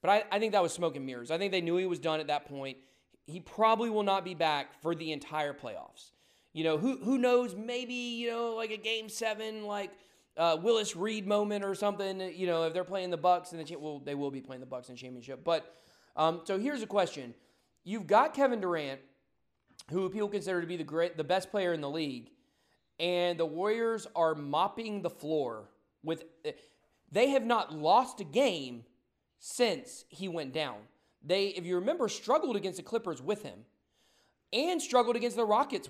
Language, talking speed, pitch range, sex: English, 205 wpm, 155-210 Hz, male